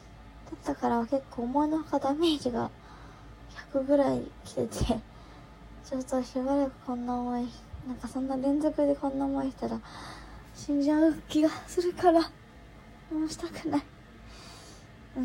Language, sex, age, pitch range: Japanese, male, 20-39, 235-280 Hz